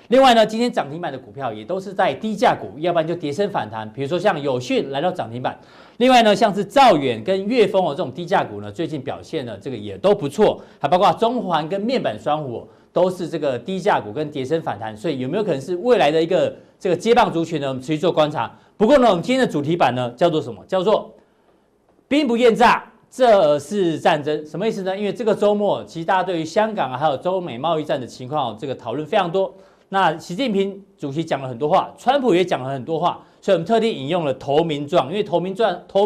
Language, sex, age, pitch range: Chinese, male, 40-59, 150-210 Hz